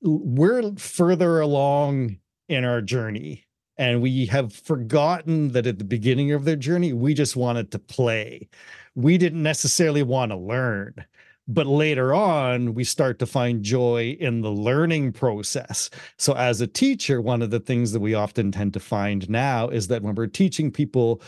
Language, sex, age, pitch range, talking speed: English, male, 40-59, 115-150 Hz, 170 wpm